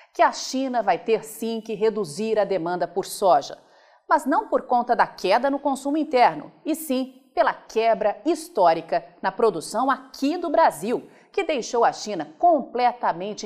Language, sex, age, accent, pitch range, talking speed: Portuguese, female, 40-59, Brazilian, 185-275 Hz, 160 wpm